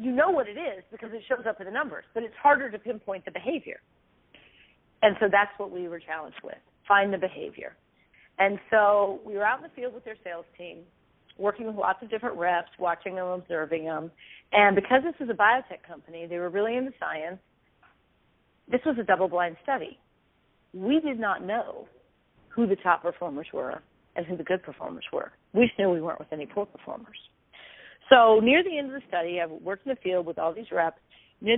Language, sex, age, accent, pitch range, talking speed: English, female, 40-59, American, 170-225 Hz, 205 wpm